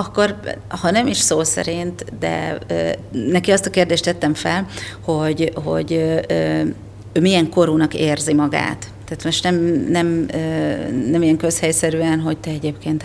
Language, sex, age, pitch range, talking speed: Hungarian, female, 40-59, 150-170 Hz, 150 wpm